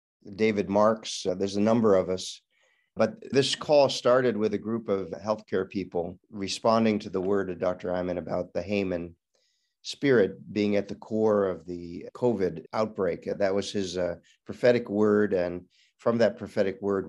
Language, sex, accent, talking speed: English, male, American, 170 wpm